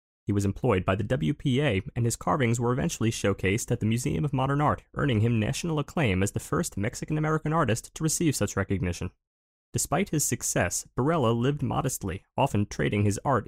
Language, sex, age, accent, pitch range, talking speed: English, male, 20-39, American, 100-140 Hz, 185 wpm